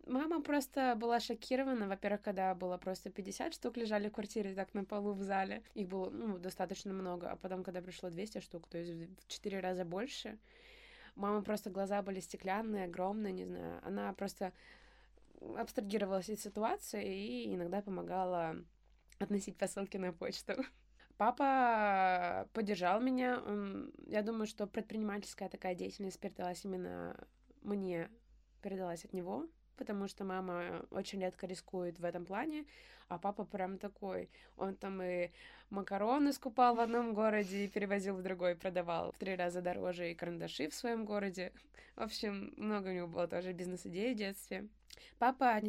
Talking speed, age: 155 wpm, 20-39